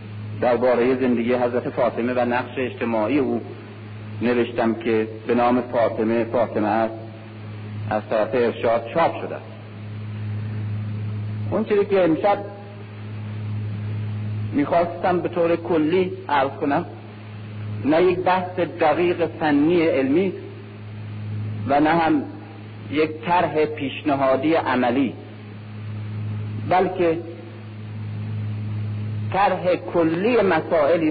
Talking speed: 90 wpm